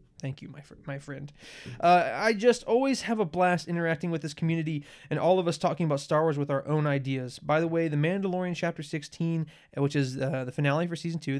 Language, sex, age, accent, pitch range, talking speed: English, male, 20-39, American, 145-175 Hz, 230 wpm